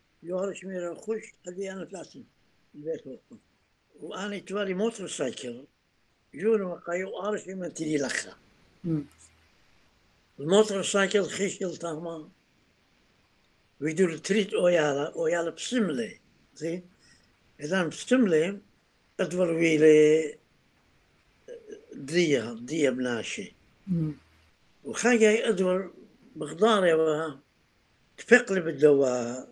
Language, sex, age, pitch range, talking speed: English, male, 60-79, 145-205 Hz, 85 wpm